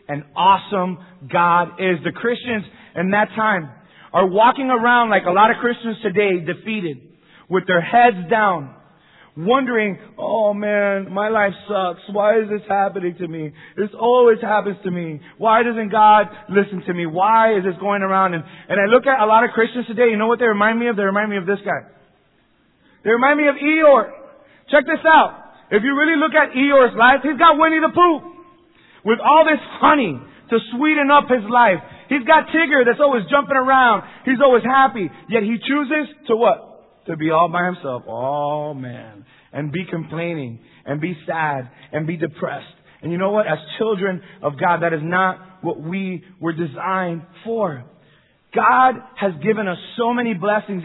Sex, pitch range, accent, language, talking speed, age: male, 175-235 Hz, American, English, 185 wpm, 30-49